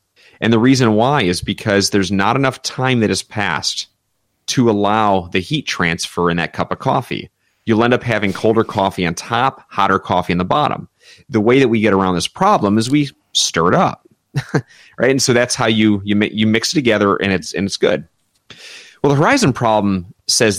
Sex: male